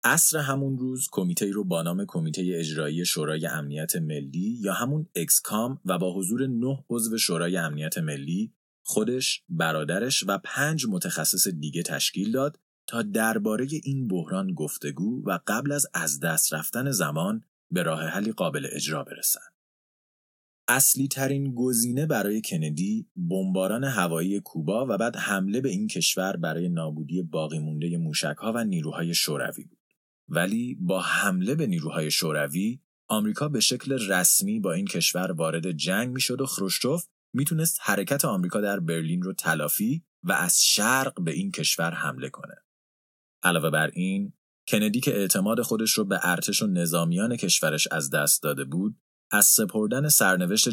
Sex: male